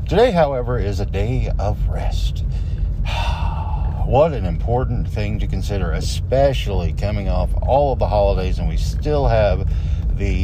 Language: English